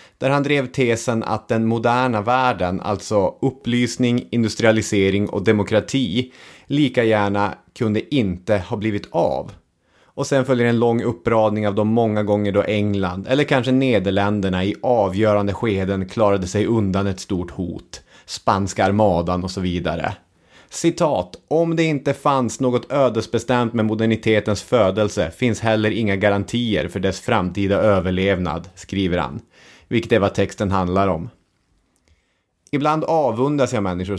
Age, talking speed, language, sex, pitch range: 30-49, 140 wpm, English, male, 95-120 Hz